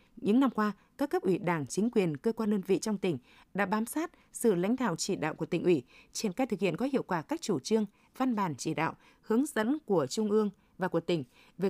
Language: Vietnamese